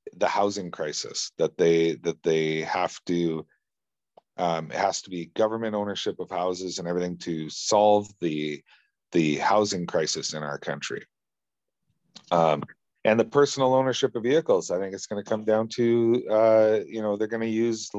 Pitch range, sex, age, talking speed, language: 85-110 Hz, male, 40-59, 170 wpm, English